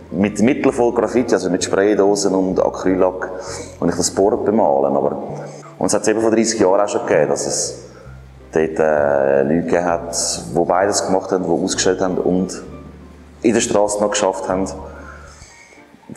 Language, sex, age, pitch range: German, male, 30-49, 85-105 Hz